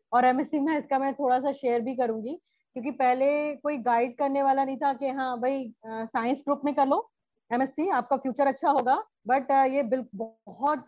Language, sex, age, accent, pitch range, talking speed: Hindi, female, 30-49, native, 245-280 Hz, 200 wpm